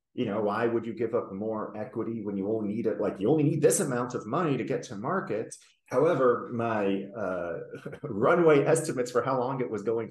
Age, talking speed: 30-49, 220 wpm